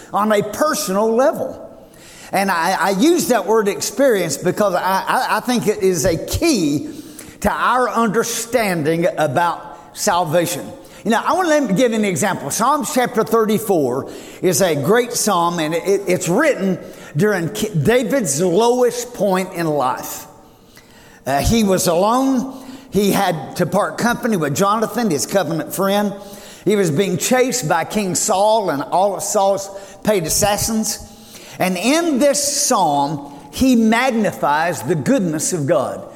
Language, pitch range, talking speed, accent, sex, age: English, 185-240 Hz, 145 wpm, American, male, 50-69